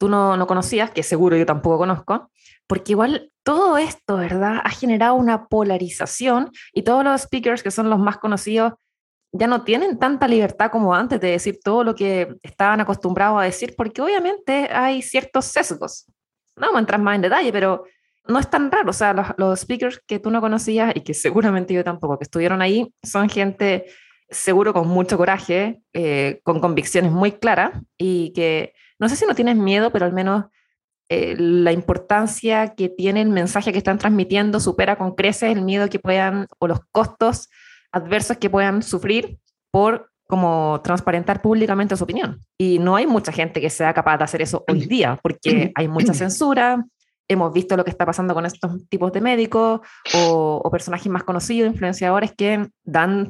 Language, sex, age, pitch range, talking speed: Spanish, female, 20-39, 180-225 Hz, 185 wpm